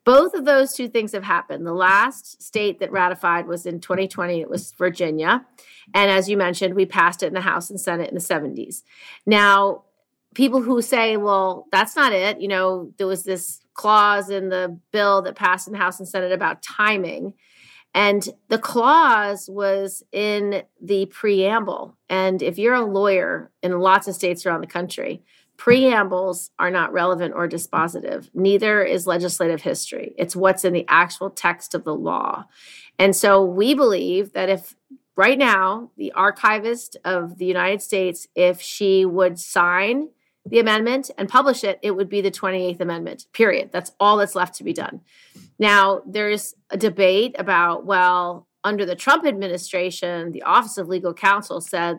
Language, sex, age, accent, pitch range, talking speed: English, female, 30-49, American, 180-210 Hz, 175 wpm